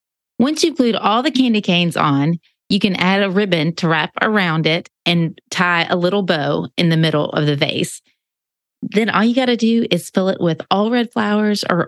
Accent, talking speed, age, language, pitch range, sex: American, 205 wpm, 30-49, English, 170-220 Hz, female